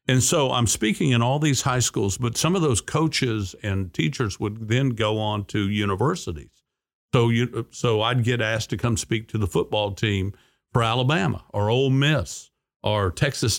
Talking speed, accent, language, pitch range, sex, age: 185 wpm, American, English, 95-115 Hz, male, 50-69